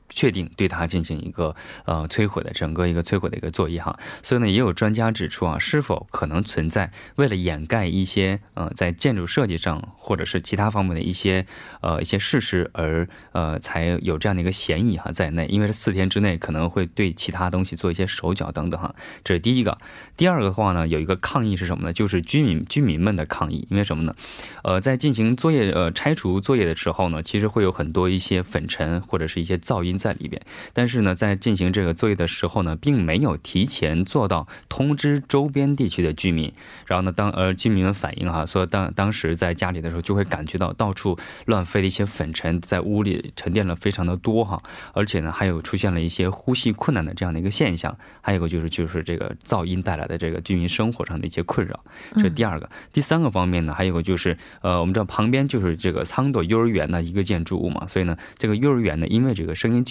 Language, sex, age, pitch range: Korean, male, 20-39, 85-105 Hz